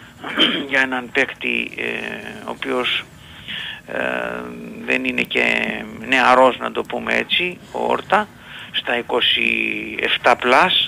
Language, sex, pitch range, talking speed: Greek, male, 125-155 Hz, 105 wpm